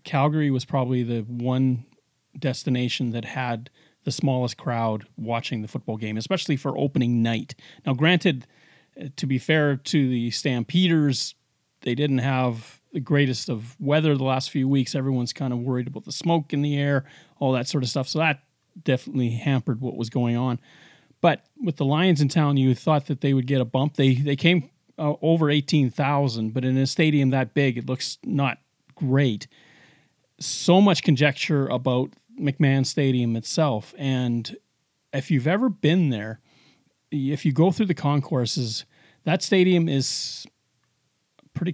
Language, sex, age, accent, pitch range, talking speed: English, male, 40-59, American, 130-155 Hz, 165 wpm